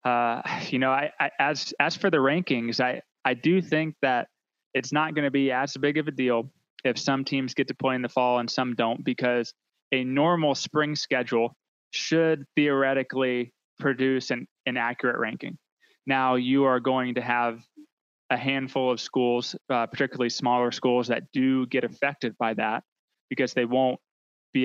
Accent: American